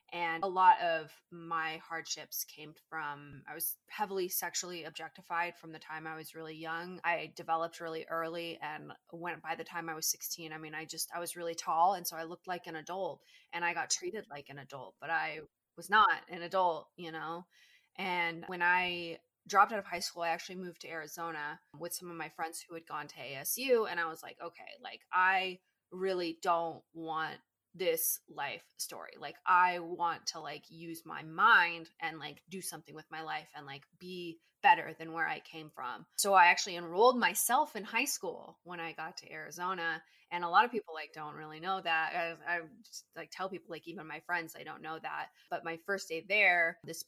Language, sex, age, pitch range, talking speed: English, female, 20-39, 160-185 Hz, 210 wpm